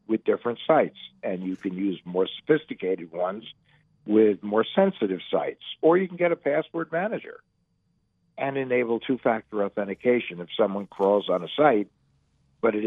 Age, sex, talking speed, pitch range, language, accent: 50-69, male, 155 wpm, 105-150 Hz, English, American